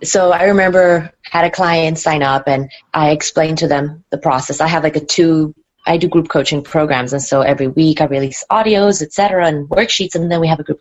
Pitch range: 150-180 Hz